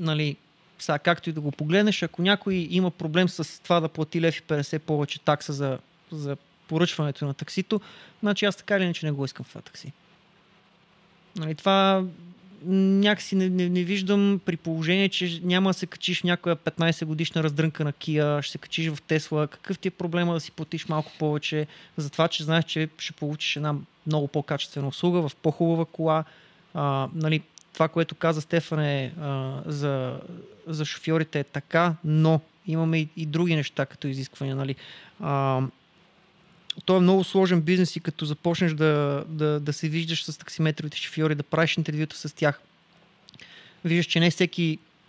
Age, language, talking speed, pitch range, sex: 30-49, Bulgarian, 175 wpm, 150-175 Hz, male